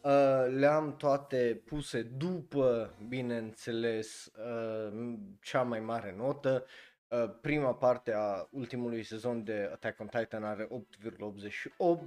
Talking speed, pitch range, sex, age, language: 115 wpm, 110-145 Hz, male, 20-39, Romanian